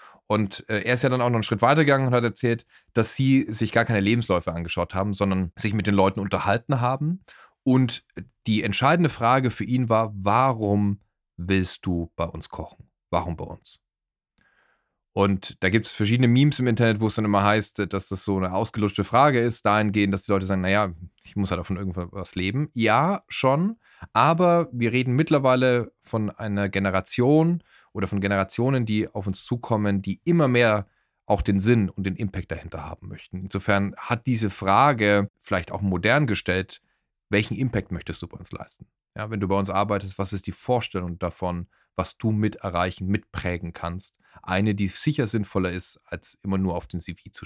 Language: German